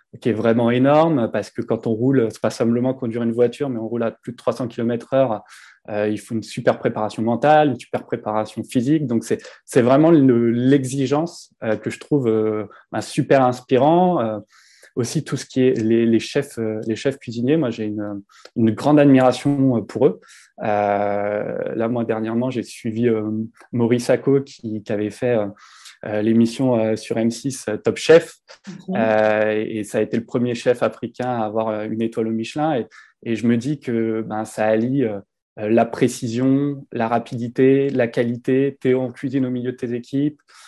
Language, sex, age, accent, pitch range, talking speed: French, male, 20-39, French, 110-135 Hz, 195 wpm